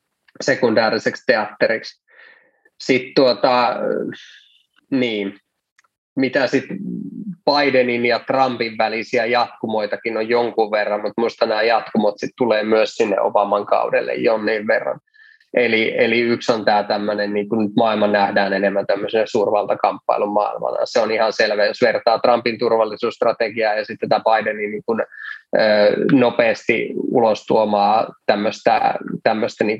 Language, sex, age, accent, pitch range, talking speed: Finnish, male, 20-39, native, 105-130 Hz, 125 wpm